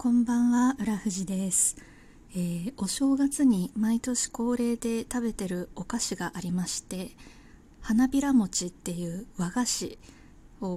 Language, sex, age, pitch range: Japanese, female, 20-39, 190-245 Hz